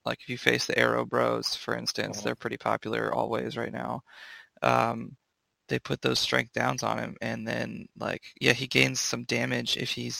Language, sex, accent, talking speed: English, male, American, 195 wpm